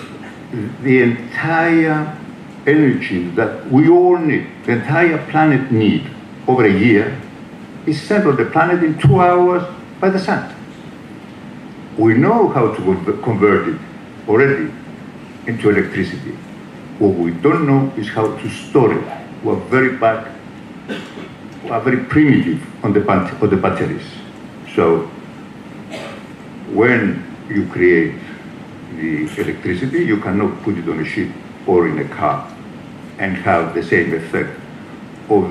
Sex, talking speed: male, 135 wpm